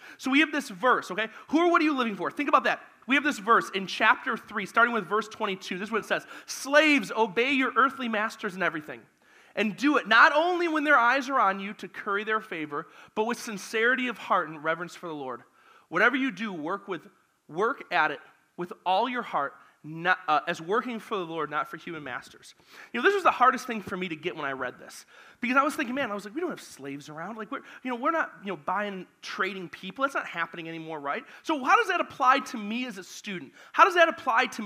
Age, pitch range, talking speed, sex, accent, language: 30-49, 190-285 Hz, 250 wpm, male, American, English